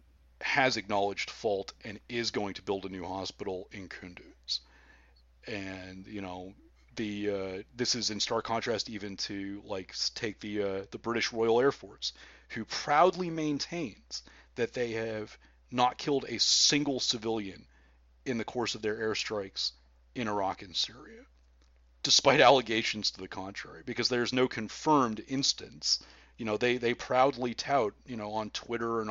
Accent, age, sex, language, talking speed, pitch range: American, 30-49, male, English, 155 wpm, 90-120 Hz